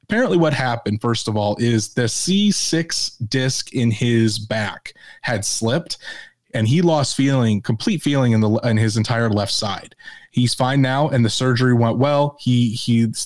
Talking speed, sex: 170 wpm, male